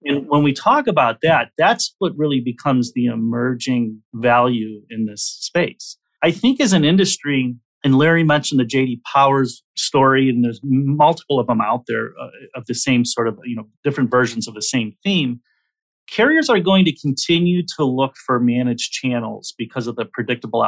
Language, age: English, 40-59